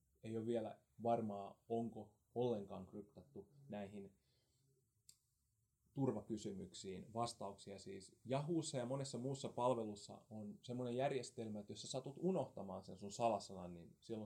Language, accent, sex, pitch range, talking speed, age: English, Finnish, male, 100-120 Hz, 120 wpm, 30-49